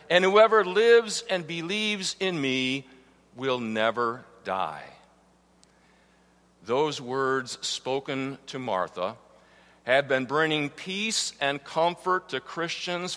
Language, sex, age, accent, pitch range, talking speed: English, male, 50-69, American, 135-210 Hz, 105 wpm